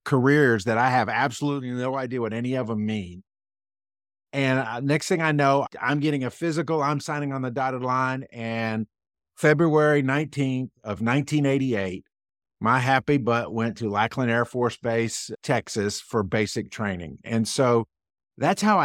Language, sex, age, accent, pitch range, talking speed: English, male, 50-69, American, 115-145 Hz, 160 wpm